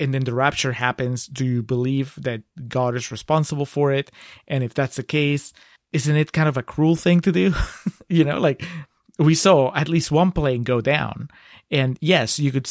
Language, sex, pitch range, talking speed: English, male, 130-165 Hz, 205 wpm